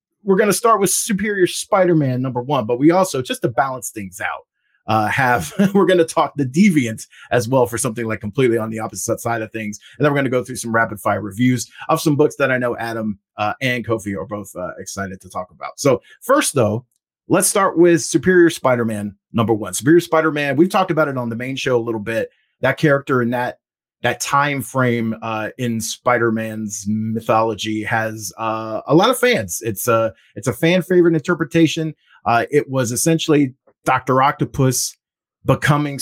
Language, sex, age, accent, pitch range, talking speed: English, male, 30-49, American, 110-150 Hz, 195 wpm